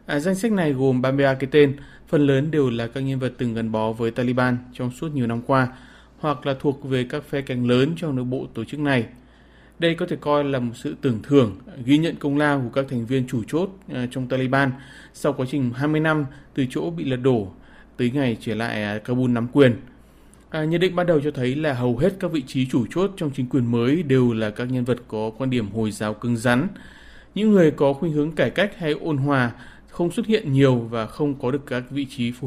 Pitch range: 125-150 Hz